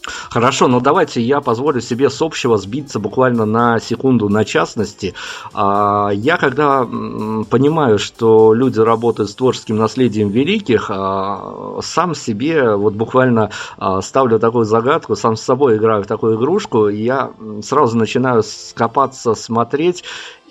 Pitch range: 110-130 Hz